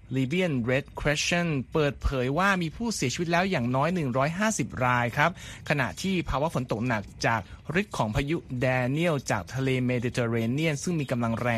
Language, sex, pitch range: Thai, male, 125-170 Hz